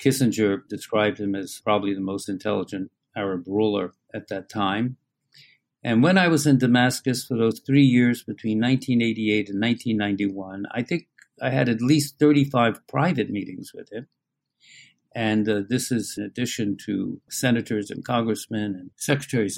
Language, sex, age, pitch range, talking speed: English, male, 60-79, 110-140 Hz, 155 wpm